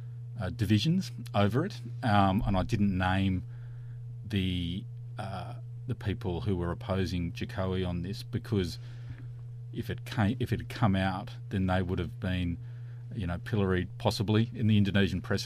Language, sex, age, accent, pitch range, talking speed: English, male, 40-59, Australian, 95-120 Hz, 160 wpm